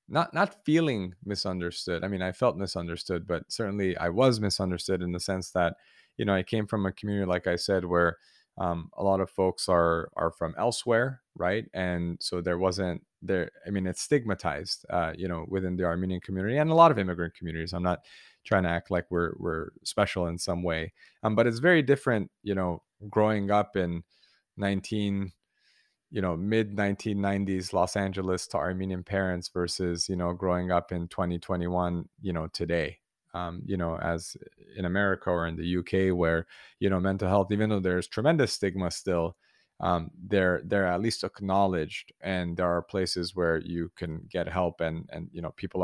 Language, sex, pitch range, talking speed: English, male, 85-100 Hz, 190 wpm